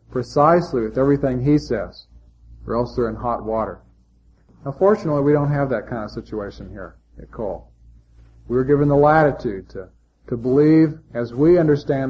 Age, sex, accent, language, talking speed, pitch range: 40-59, male, American, English, 165 wpm, 110-150 Hz